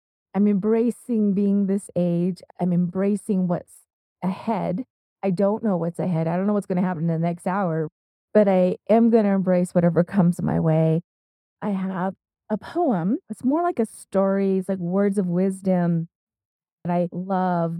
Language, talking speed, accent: English, 175 wpm, American